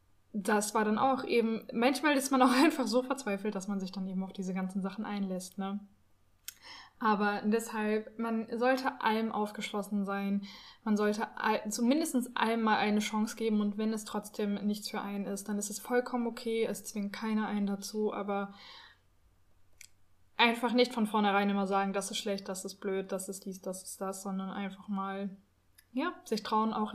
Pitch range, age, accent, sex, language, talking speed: 195-230 Hz, 20-39, German, female, German, 185 wpm